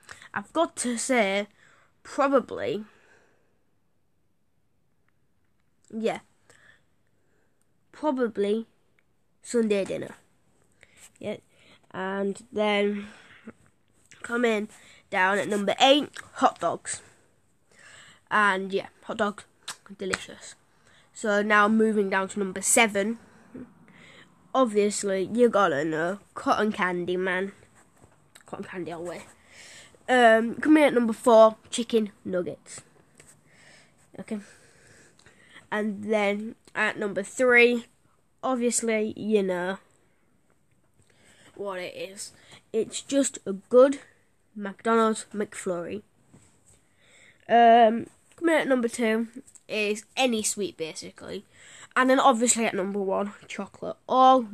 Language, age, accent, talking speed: English, 10-29, British, 90 wpm